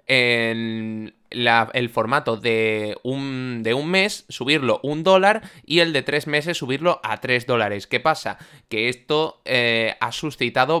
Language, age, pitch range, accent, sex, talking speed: Spanish, 20-39, 120-175 Hz, Spanish, male, 160 wpm